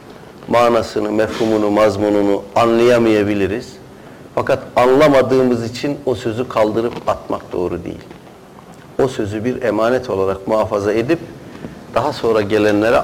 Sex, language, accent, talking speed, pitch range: male, Turkish, native, 105 wpm, 95-125 Hz